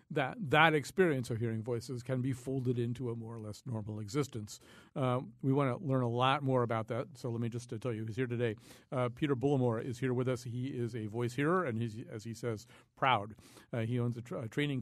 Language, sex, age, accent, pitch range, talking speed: English, male, 50-69, American, 115-140 Hz, 245 wpm